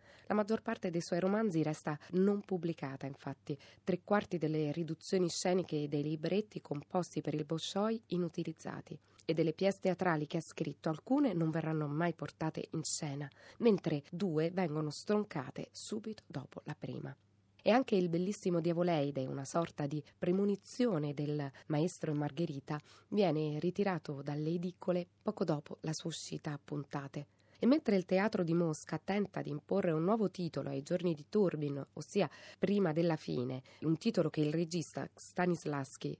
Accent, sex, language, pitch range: native, female, Italian, 150-190 Hz